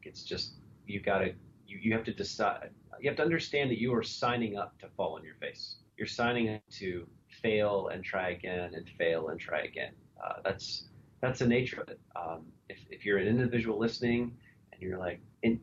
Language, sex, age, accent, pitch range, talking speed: English, male, 30-49, American, 95-120 Hz, 210 wpm